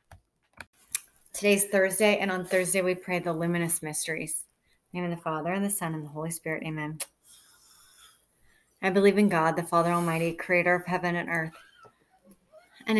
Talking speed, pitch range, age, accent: 170 wpm, 165-190 Hz, 30-49, American